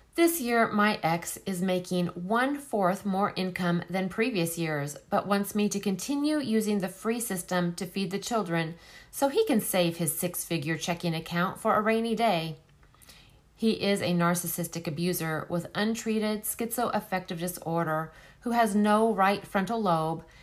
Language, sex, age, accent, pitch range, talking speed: English, female, 40-59, American, 160-210 Hz, 155 wpm